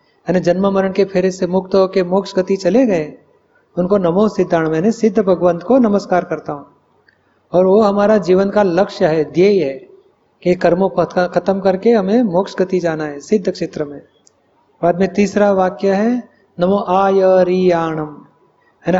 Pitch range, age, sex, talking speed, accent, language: 175-200 Hz, 30-49, male, 160 wpm, native, Hindi